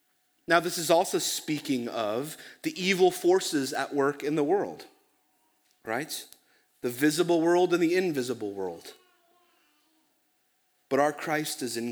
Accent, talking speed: American, 135 wpm